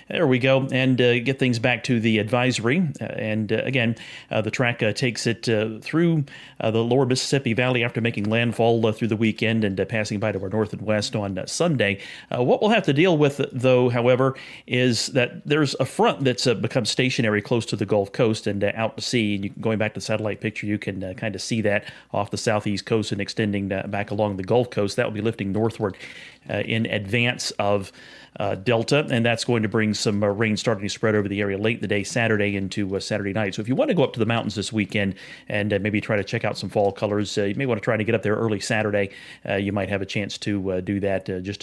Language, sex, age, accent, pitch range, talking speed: English, male, 30-49, American, 100-120 Hz, 260 wpm